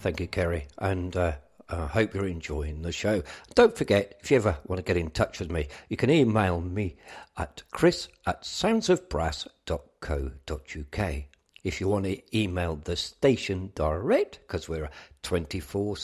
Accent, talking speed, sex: British, 160 wpm, male